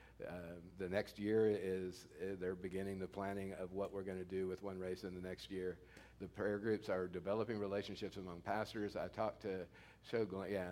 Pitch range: 90-100 Hz